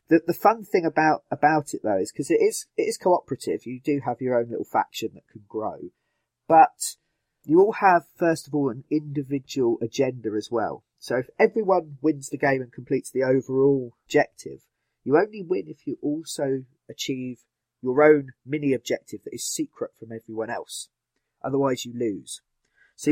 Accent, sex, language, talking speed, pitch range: British, male, English, 175 wpm, 120-155 Hz